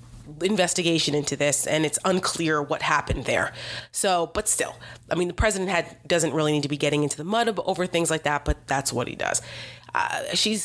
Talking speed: 210 wpm